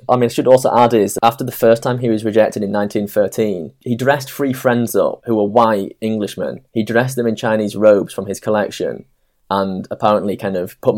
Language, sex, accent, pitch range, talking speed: English, male, British, 105-130 Hz, 215 wpm